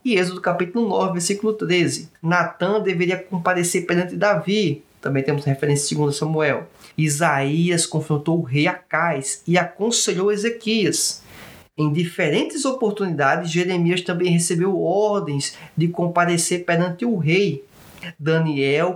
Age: 20-39